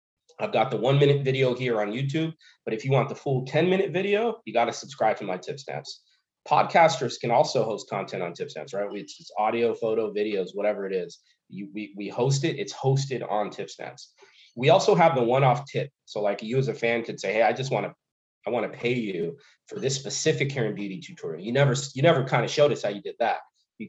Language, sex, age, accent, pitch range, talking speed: English, male, 30-49, American, 110-145 Hz, 245 wpm